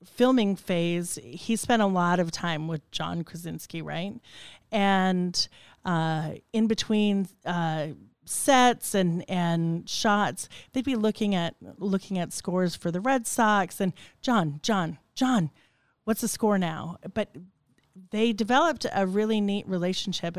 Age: 40-59